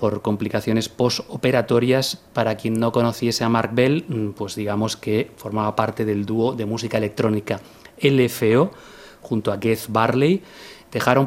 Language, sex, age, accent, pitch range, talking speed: Spanish, male, 30-49, Spanish, 105-125 Hz, 140 wpm